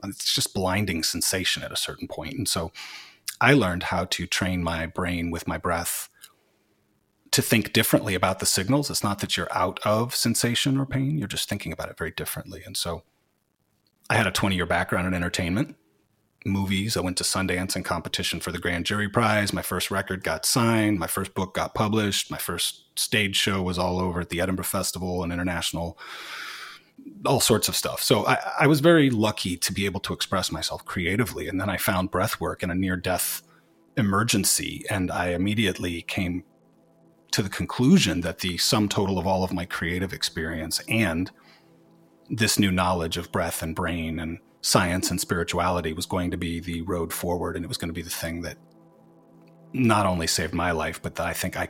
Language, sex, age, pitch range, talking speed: English, male, 30-49, 85-105 Hz, 195 wpm